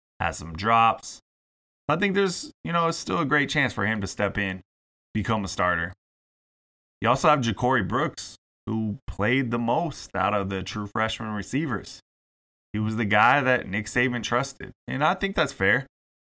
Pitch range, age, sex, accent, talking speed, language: 90-110 Hz, 20-39, male, American, 185 wpm, English